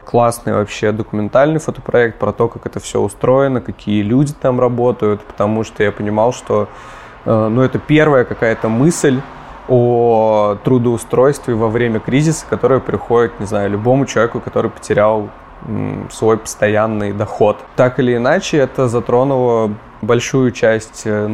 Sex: male